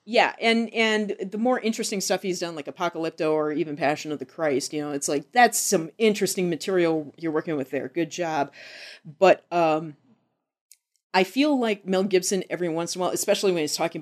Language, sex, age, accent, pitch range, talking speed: English, female, 30-49, American, 165-230 Hz, 200 wpm